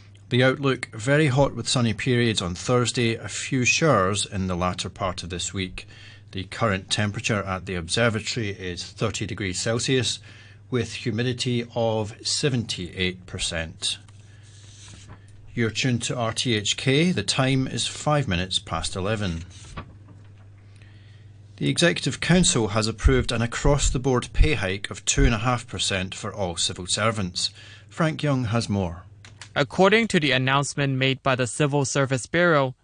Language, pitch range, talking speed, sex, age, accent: English, 105-145 Hz, 135 wpm, male, 40-59, British